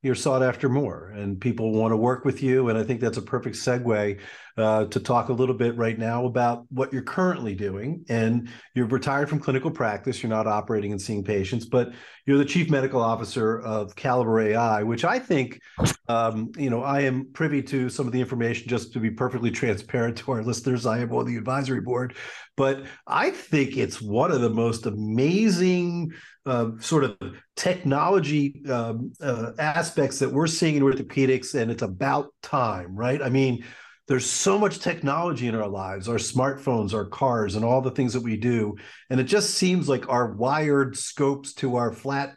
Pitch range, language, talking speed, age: 115-140 Hz, English, 195 wpm, 50-69